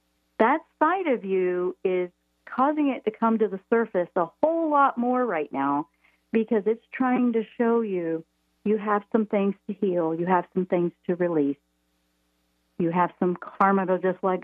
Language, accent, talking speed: English, American, 180 wpm